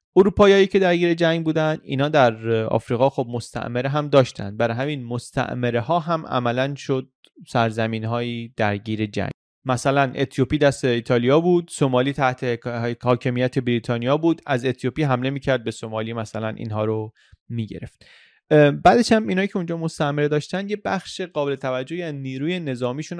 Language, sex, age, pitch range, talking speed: Persian, male, 30-49, 120-155 Hz, 155 wpm